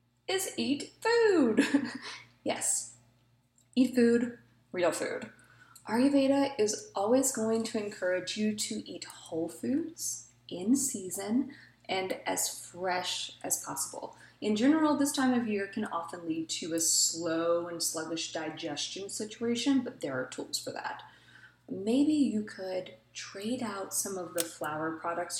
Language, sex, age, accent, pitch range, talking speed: English, female, 20-39, American, 170-255 Hz, 135 wpm